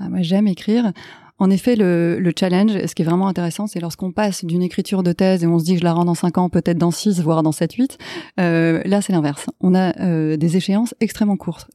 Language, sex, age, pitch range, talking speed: French, female, 30-49, 175-215 Hz, 255 wpm